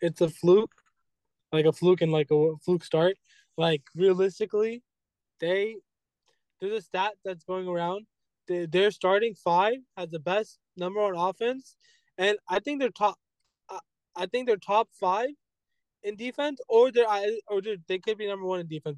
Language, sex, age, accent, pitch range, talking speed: English, male, 20-39, American, 175-210 Hz, 160 wpm